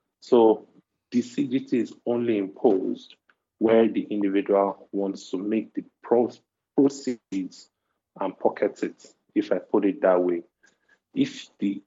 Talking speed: 125 wpm